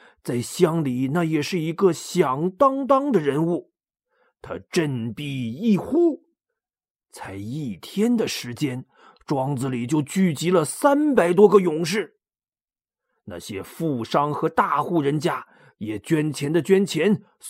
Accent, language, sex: native, Chinese, male